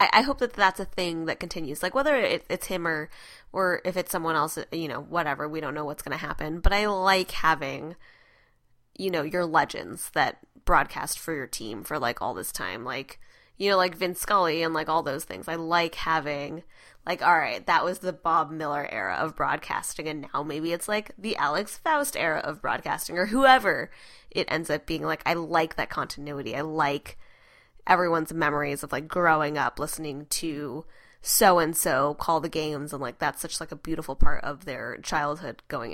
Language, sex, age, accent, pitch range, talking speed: English, female, 10-29, American, 150-185 Hz, 200 wpm